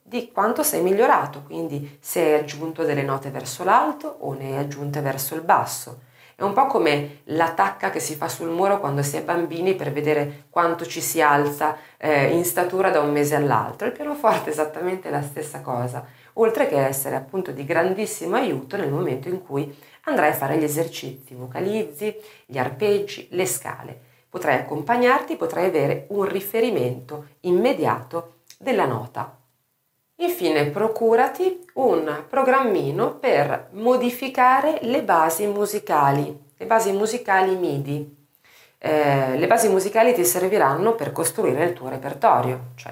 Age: 40-59